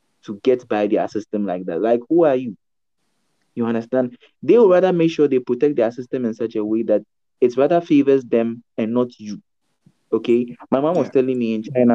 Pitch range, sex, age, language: 110-140 Hz, male, 20-39, English